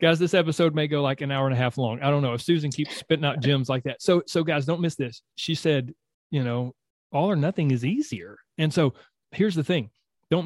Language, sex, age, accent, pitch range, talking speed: English, male, 30-49, American, 130-165 Hz, 250 wpm